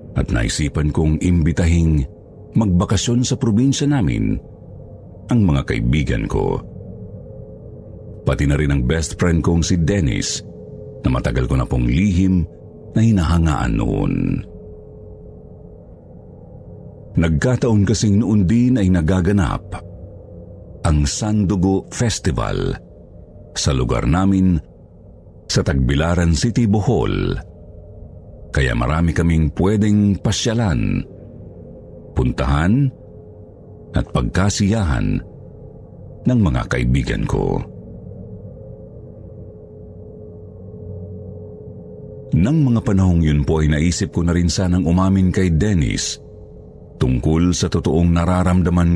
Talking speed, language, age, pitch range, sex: 95 wpm, Filipino, 50-69, 85-105 Hz, male